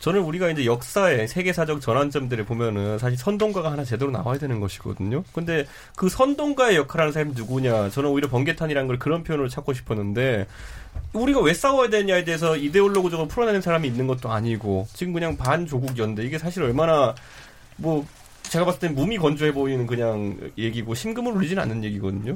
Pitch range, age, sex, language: 125-180 Hz, 30-49, male, Korean